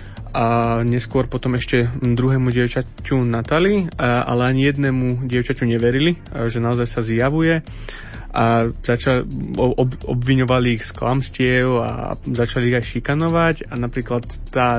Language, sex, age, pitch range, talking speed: Slovak, male, 20-39, 115-130 Hz, 120 wpm